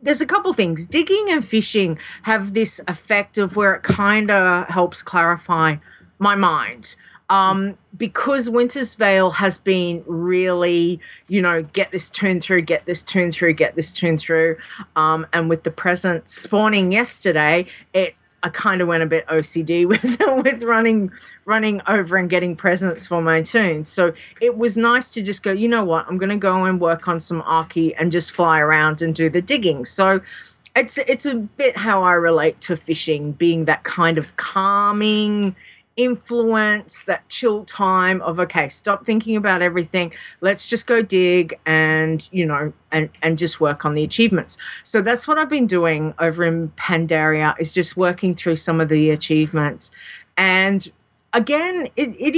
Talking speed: 175 wpm